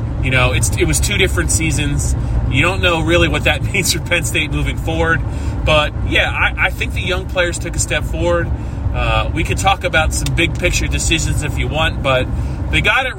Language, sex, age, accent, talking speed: English, male, 30-49, American, 215 wpm